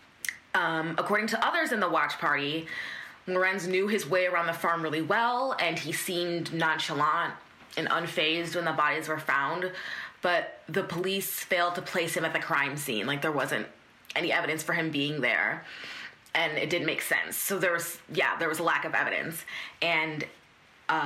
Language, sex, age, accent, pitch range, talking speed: English, female, 20-39, American, 155-185 Hz, 185 wpm